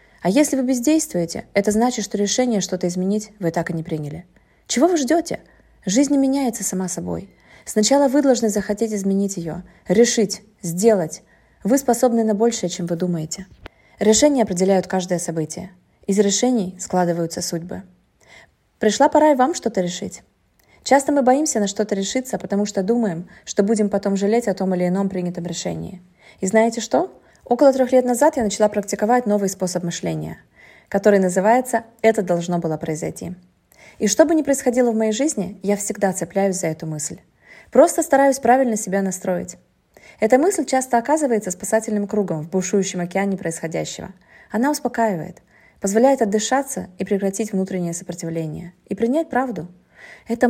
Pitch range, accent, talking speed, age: 185-240 Hz, native, 155 wpm, 20-39